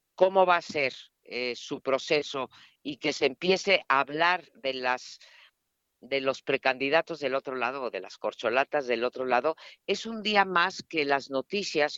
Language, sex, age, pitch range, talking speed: Spanish, female, 50-69, 130-165 Hz, 175 wpm